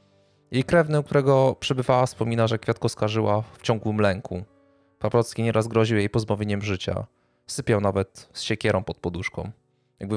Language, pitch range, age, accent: Polish, 100-120 Hz, 20-39, native